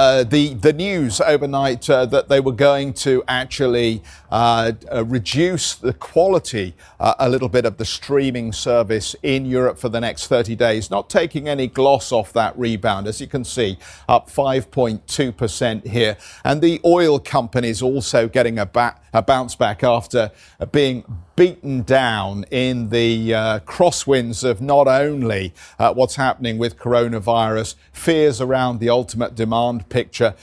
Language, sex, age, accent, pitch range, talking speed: English, male, 50-69, British, 115-135 Hz, 155 wpm